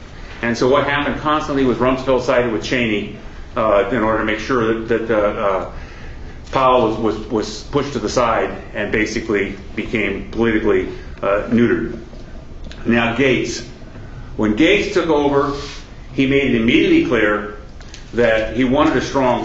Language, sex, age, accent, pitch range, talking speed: English, male, 50-69, American, 110-130 Hz, 155 wpm